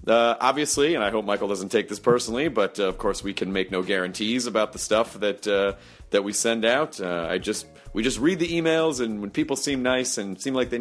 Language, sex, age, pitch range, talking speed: English, male, 30-49, 95-130 Hz, 250 wpm